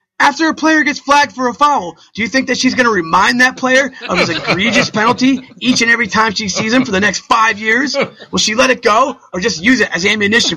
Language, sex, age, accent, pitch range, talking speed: English, male, 30-49, American, 195-260 Hz, 255 wpm